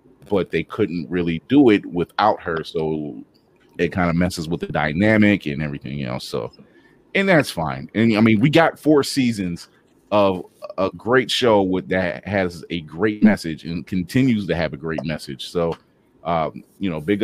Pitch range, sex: 85-110 Hz, male